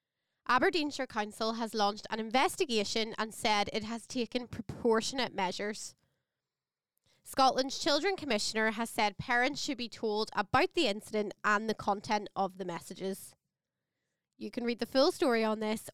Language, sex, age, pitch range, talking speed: English, female, 10-29, 200-260 Hz, 145 wpm